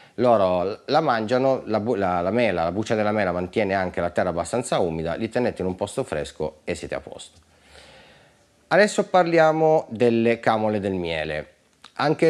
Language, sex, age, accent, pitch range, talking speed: Italian, male, 30-49, native, 90-125 Hz, 170 wpm